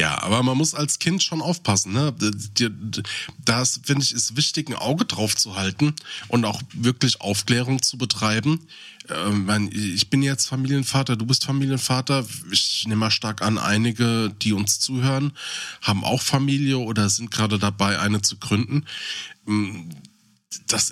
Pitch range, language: 105-135 Hz, German